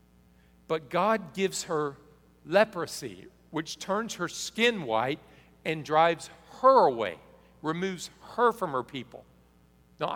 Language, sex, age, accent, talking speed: English, male, 50-69, American, 120 wpm